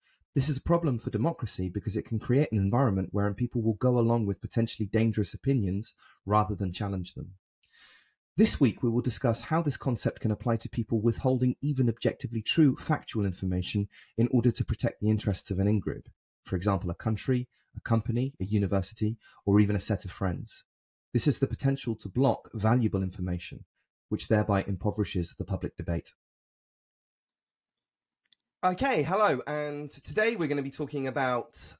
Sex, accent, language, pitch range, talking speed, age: male, British, English, 100-135 Hz, 170 wpm, 30-49